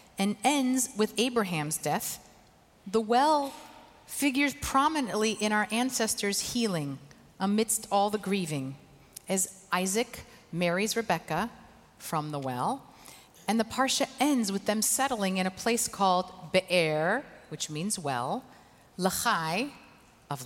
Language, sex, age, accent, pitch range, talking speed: English, female, 40-59, American, 175-230 Hz, 120 wpm